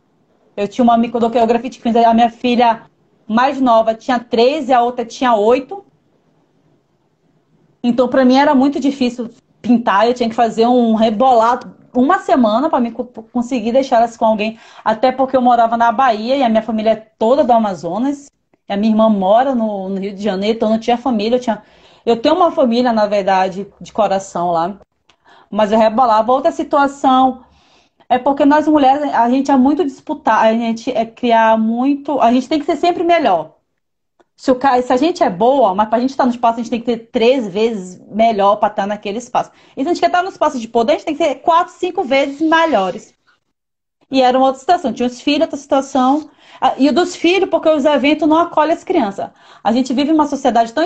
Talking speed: 205 wpm